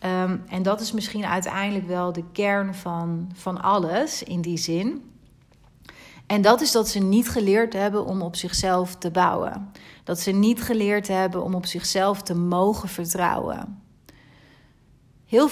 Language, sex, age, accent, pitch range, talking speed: Dutch, female, 30-49, Dutch, 180-205 Hz, 150 wpm